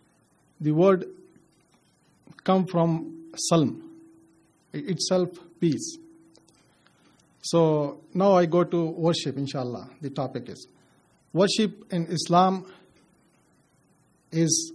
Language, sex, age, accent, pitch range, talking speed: English, male, 50-69, Indian, 160-190 Hz, 85 wpm